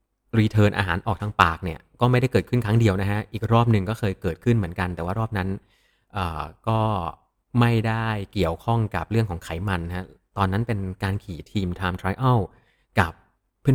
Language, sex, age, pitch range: Thai, male, 30-49, 95-115 Hz